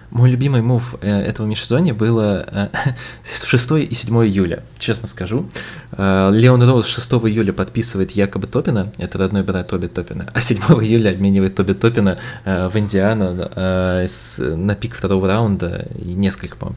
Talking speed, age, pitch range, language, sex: 145 wpm, 20-39, 95-115 Hz, Russian, male